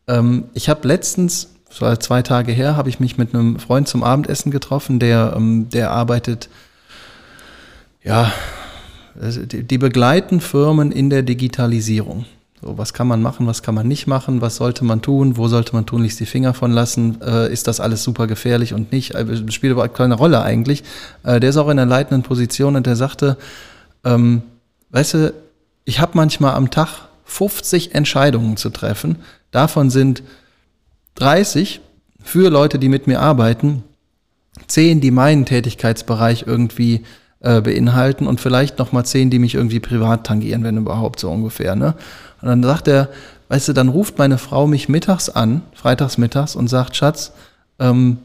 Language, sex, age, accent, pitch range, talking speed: German, male, 20-39, German, 115-140 Hz, 165 wpm